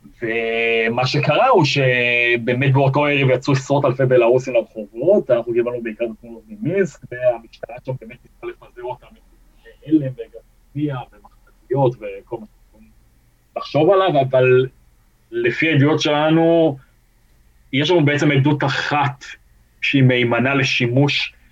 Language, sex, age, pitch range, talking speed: Hebrew, male, 30-49, 115-150 Hz, 125 wpm